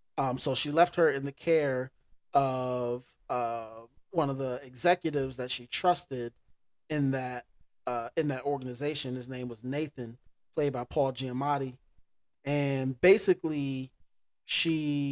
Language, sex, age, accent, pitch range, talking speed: English, male, 20-39, American, 120-145 Hz, 135 wpm